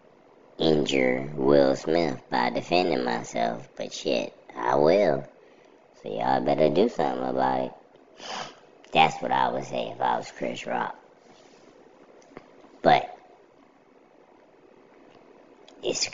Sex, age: male, 20-39